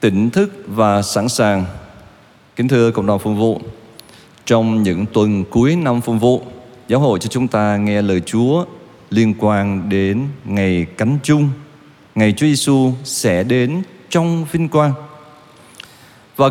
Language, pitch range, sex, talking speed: Vietnamese, 105-135 Hz, male, 150 wpm